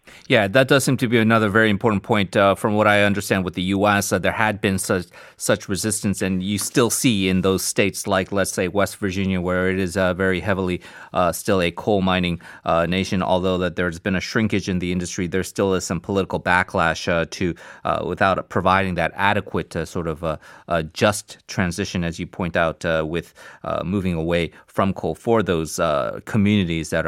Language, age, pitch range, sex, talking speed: English, 30-49, 95-120 Hz, male, 210 wpm